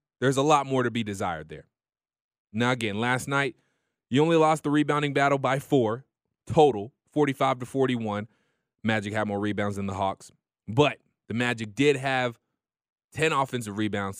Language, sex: English, male